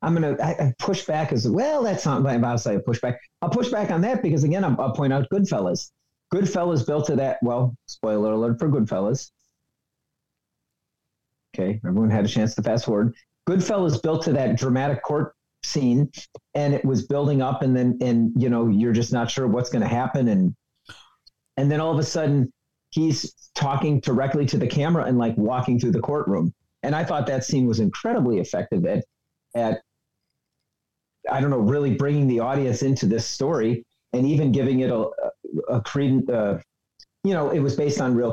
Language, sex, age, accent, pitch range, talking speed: English, male, 40-59, American, 120-150 Hz, 195 wpm